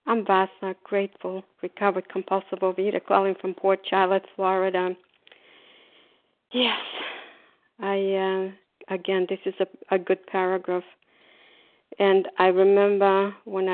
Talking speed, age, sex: 110 wpm, 50-69, female